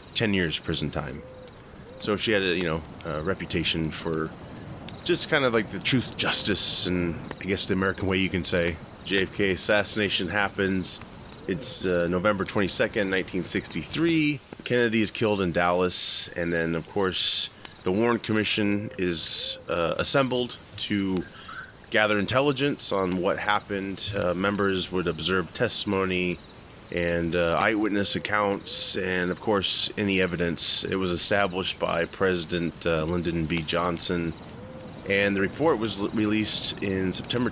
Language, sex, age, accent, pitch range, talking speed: English, male, 30-49, American, 85-105 Hz, 140 wpm